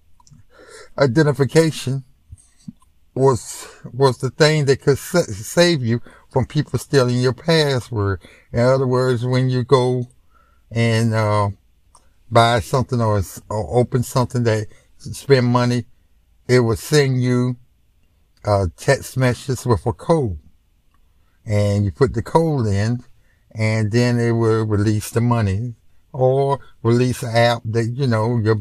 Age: 60-79